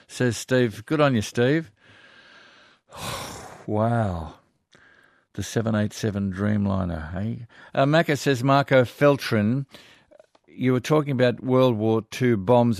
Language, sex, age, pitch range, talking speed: English, male, 50-69, 100-125 Hz, 115 wpm